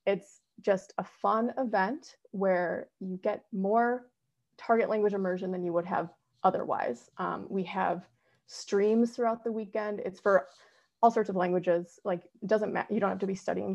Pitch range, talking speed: 185-230 Hz, 175 wpm